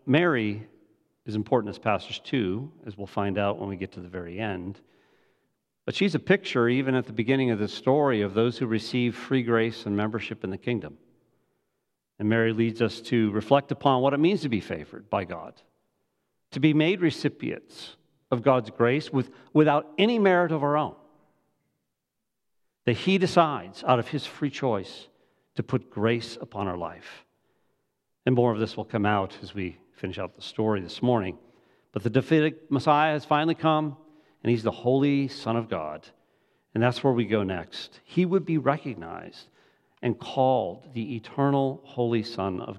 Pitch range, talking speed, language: 110-145 Hz, 180 wpm, English